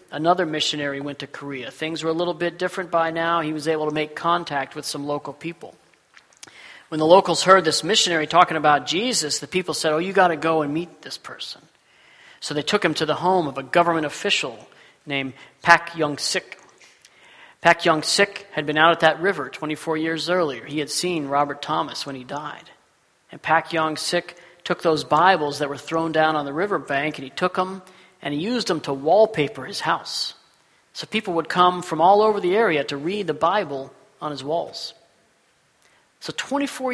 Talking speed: 200 wpm